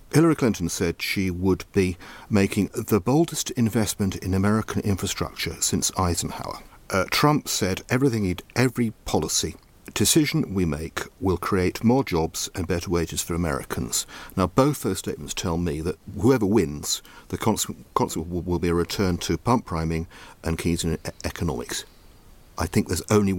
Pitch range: 85-105 Hz